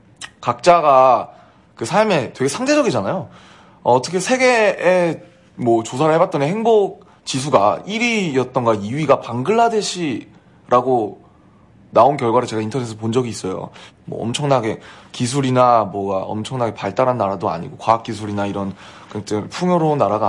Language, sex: Korean, male